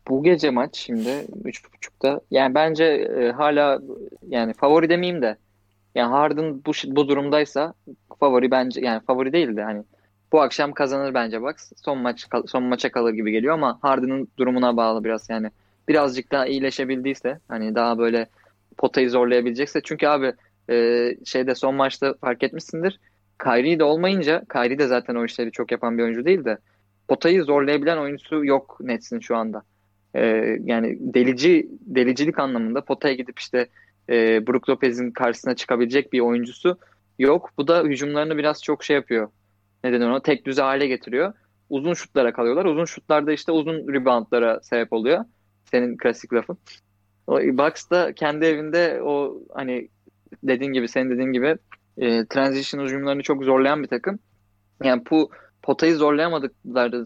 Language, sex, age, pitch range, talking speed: Turkish, male, 20-39, 115-145 Hz, 150 wpm